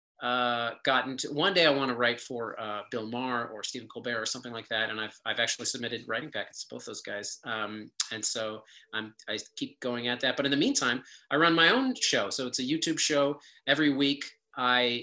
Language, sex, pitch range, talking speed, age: English, male, 115-150 Hz, 230 wpm, 40-59